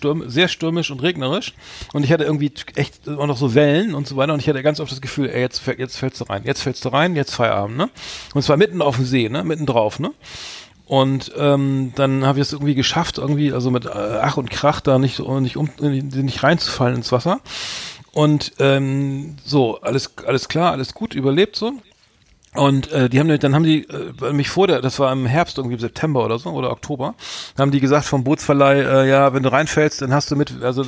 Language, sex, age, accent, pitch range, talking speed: German, male, 40-59, German, 130-150 Hz, 220 wpm